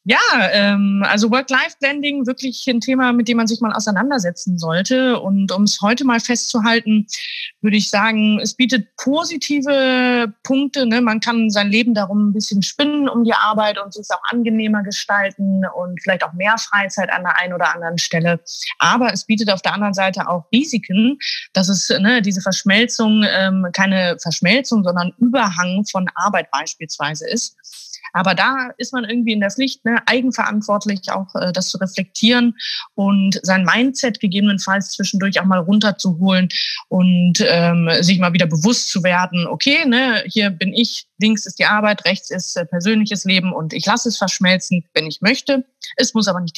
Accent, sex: German, female